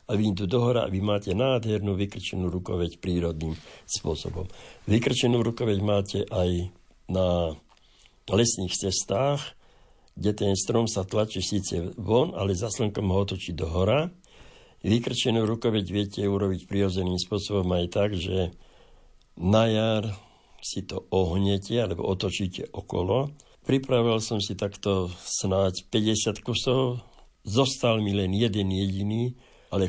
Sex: male